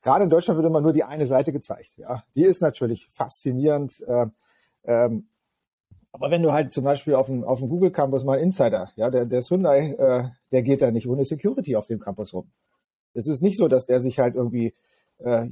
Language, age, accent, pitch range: German, 40-59, German, 125-155 Hz